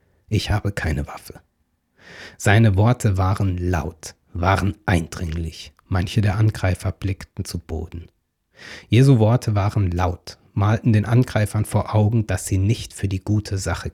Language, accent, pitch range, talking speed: German, German, 90-110 Hz, 140 wpm